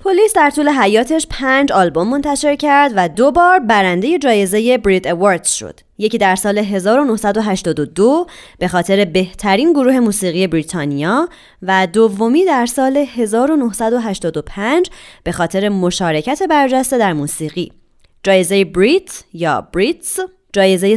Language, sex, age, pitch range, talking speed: Persian, female, 20-39, 185-270 Hz, 120 wpm